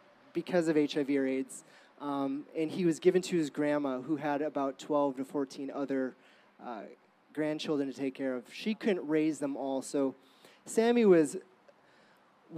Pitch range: 140-165 Hz